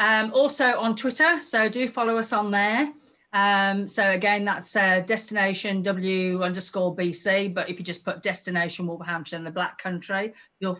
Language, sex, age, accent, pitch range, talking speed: English, female, 40-59, British, 175-225 Hz, 165 wpm